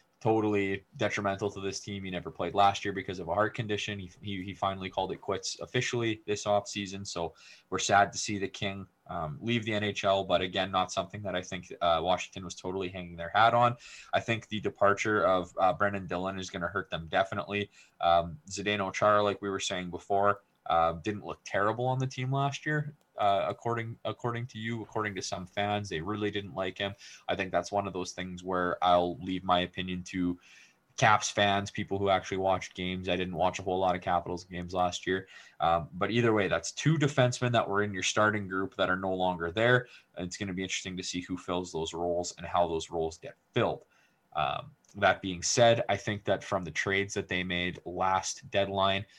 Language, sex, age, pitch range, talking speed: English, male, 20-39, 90-105 Hz, 215 wpm